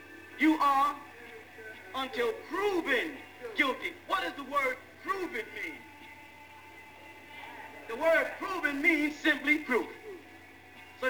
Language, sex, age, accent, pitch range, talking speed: English, male, 40-59, American, 260-345 Hz, 95 wpm